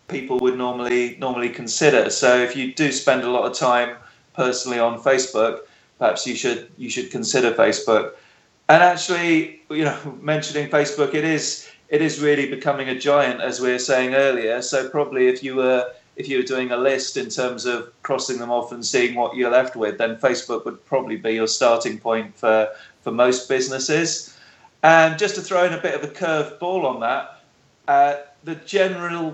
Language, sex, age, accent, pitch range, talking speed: English, male, 30-49, British, 125-155 Hz, 190 wpm